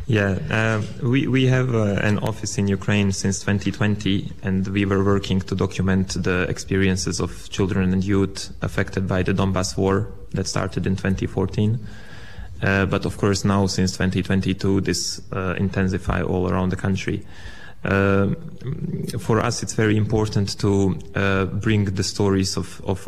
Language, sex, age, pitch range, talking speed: Romanian, male, 20-39, 95-100 Hz, 155 wpm